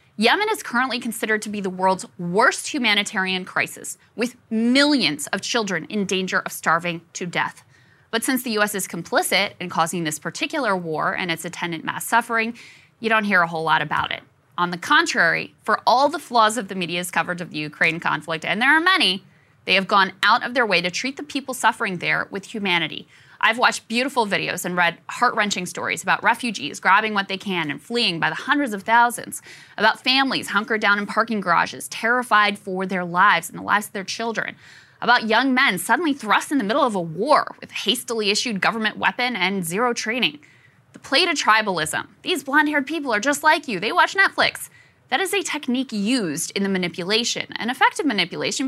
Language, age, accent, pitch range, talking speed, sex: English, 20-39, American, 180-245 Hz, 195 wpm, female